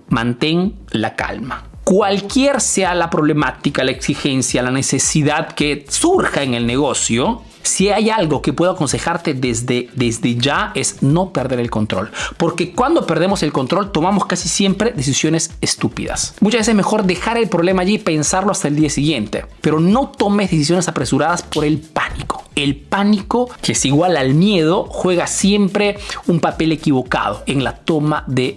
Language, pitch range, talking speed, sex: Spanish, 135-195 Hz, 165 wpm, male